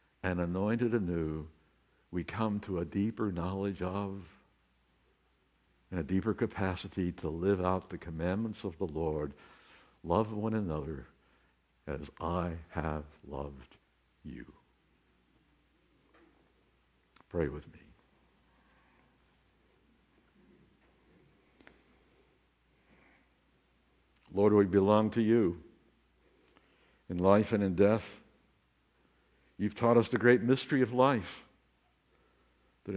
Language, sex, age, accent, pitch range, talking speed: English, male, 60-79, American, 80-105 Hz, 95 wpm